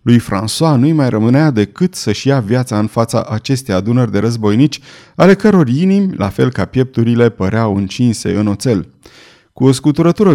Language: Romanian